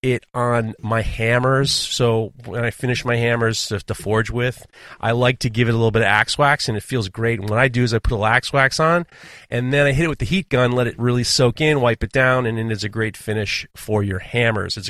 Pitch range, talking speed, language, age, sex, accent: 115-145 Hz, 265 wpm, English, 30-49, male, American